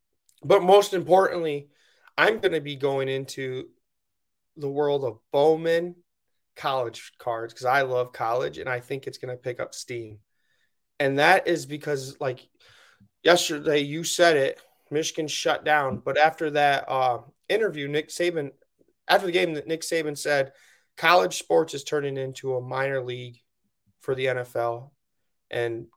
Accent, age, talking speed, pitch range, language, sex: American, 20-39, 150 wpm, 130-160 Hz, English, male